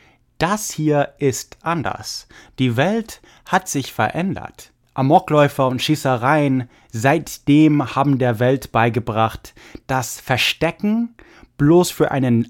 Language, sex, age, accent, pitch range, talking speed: English, male, 30-49, German, 115-150 Hz, 105 wpm